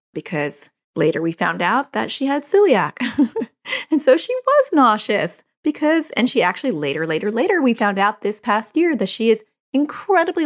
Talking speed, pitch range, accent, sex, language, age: 180 wpm, 170-260 Hz, American, female, English, 30-49